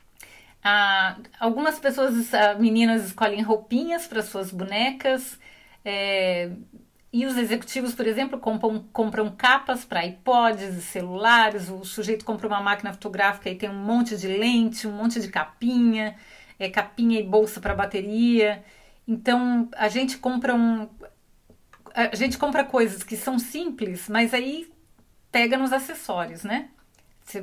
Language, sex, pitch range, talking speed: Portuguese, female, 205-250 Hz, 125 wpm